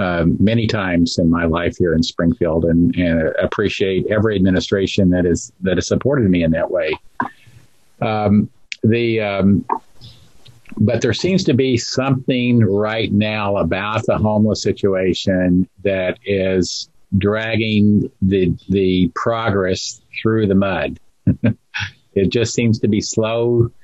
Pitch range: 95-115 Hz